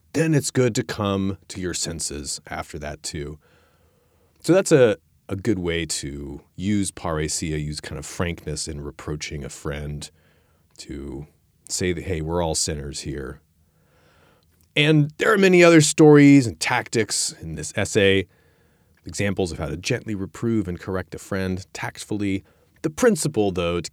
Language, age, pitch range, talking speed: English, 30-49, 80-105 Hz, 155 wpm